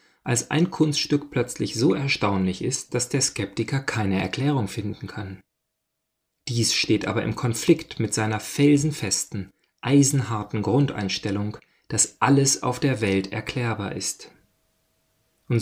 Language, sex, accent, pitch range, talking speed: German, male, German, 105-145 Hz, 125 wpm